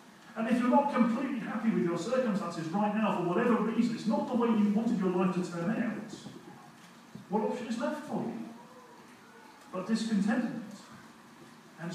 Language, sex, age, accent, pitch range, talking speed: English, male, 40-59, British, 170-225 Hz, 170 wpm